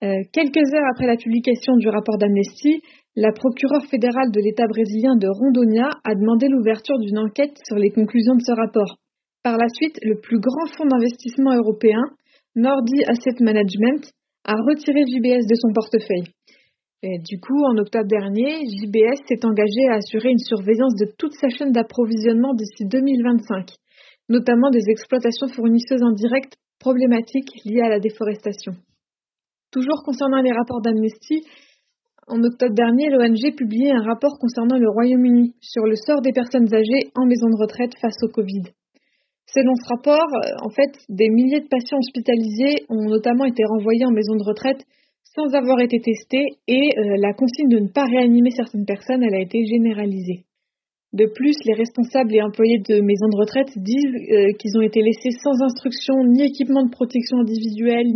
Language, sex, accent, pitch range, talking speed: French, female, French, 220-265 Hz, 170 wpm